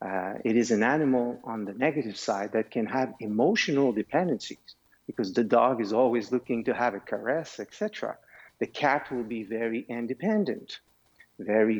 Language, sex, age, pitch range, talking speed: English, male, 50-69, 105-130 Hz, 165 wpm